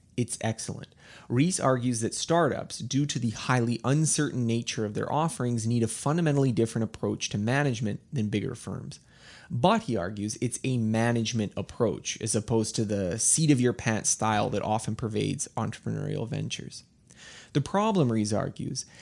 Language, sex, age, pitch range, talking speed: English, male, 30-49, 110-140 Hz, 150 wpm